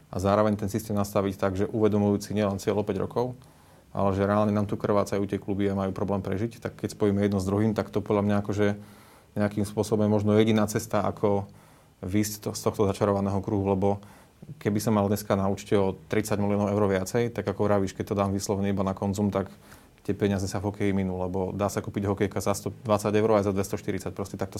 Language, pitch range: Slovak, 100-110 Hz